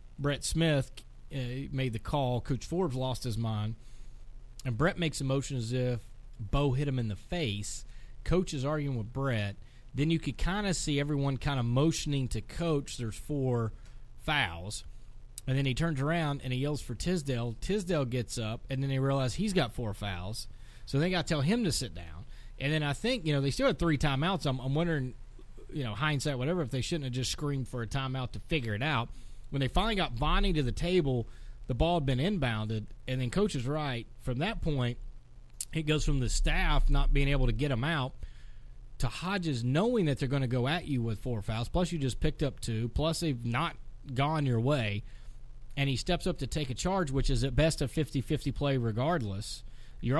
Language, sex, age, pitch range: English, male, 30-49, 120-155 Hz